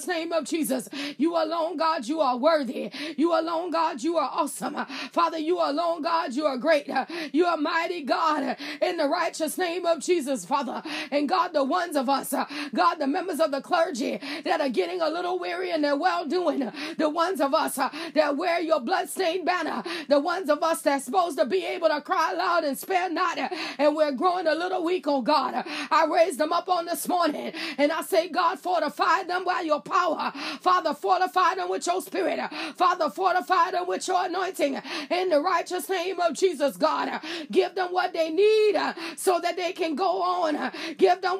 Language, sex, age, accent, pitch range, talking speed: English, female, 30-49, American, 310-365 Hz, 195 wpm